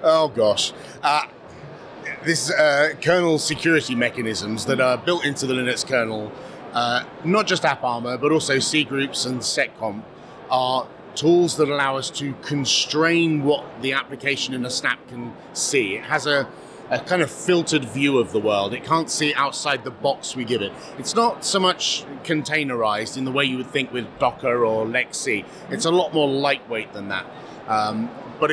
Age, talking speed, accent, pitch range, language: 30-49, 175 wpm, British, 125-150 Hz, English